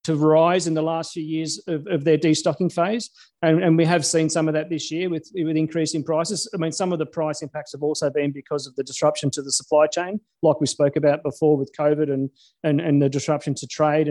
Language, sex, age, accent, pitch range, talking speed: English, male, 40-59, Australian, 150-170 Hz, 245 wpm